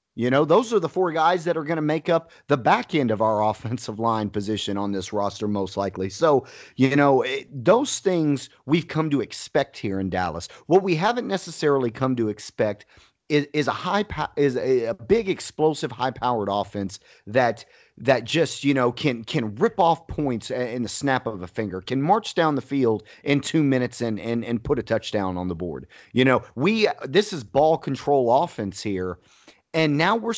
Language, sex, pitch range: English, male, 110-150 Hz